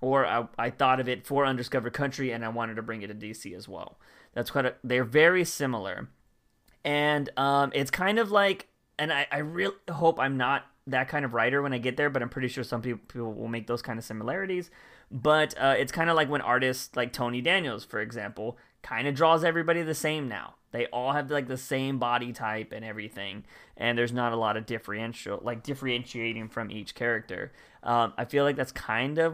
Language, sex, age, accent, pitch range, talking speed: English, male, 20-39, American, 120-155 Hz, 220 wpm